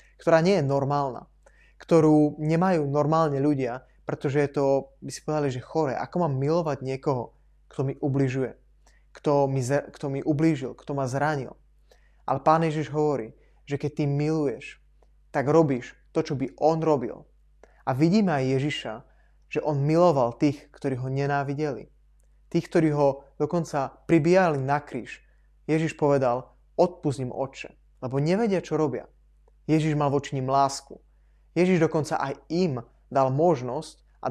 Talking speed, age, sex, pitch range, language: 145 wpm, 20-39, male, 135-155 Hz, Slovak